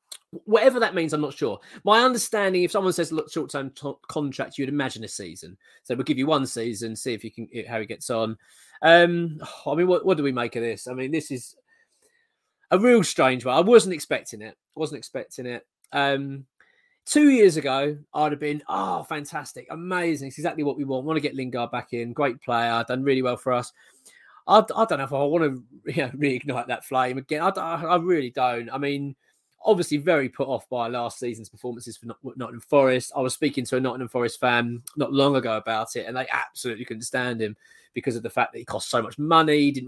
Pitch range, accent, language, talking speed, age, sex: 120-160 Hz, British, English, 225 wpm, 20-39, male